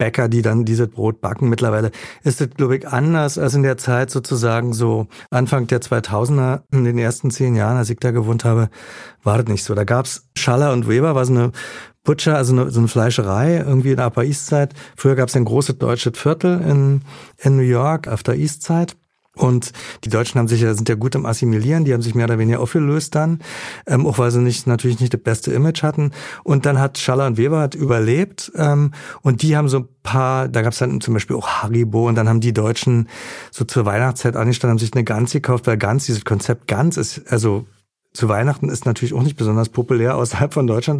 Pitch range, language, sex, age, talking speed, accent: 120-145 Hz, German, male, 40-59, 225 wpm, German